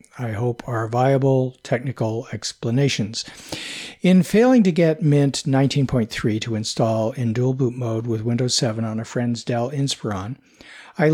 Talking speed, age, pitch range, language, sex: 145 wpm, 50-69, 115-145 Hz, English, male